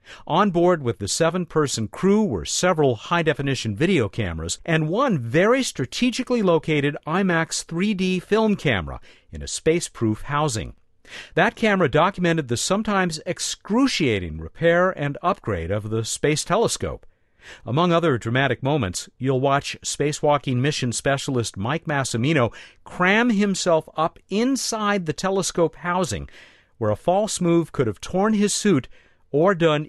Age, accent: 50-69, American